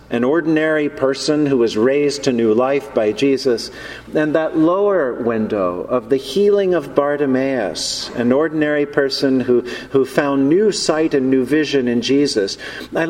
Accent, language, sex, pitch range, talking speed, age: American, English, male, 130-160 Hz, 155 wpm, 50-69